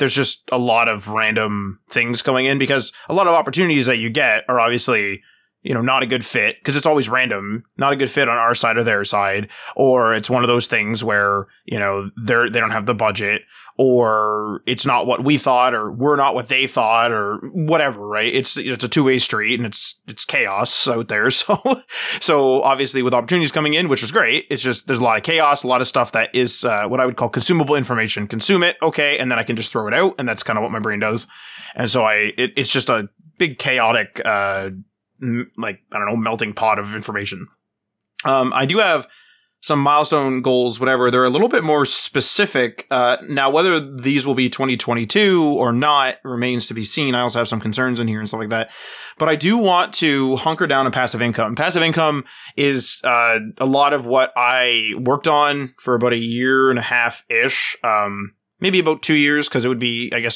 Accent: American